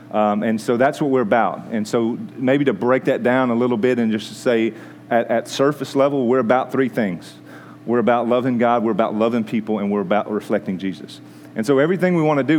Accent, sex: American, male